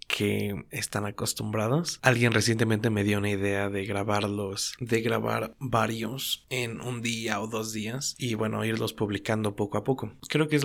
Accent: Mexican